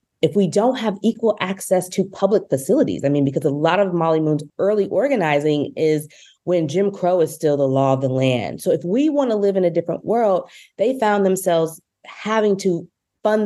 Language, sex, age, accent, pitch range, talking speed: English, female, 20-39, American, 155-200 Hz, 205 wpm